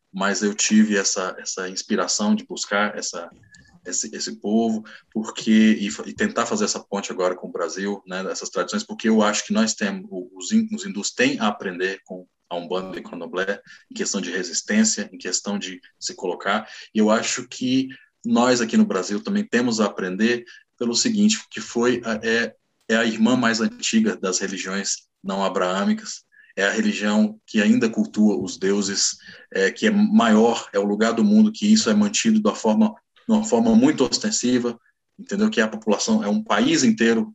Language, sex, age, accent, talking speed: English, male, 20-39, Brazilian, 190 wpm